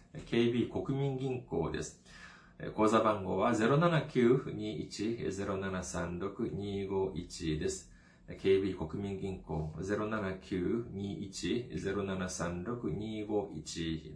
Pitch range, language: 90-110 Hz, Japanese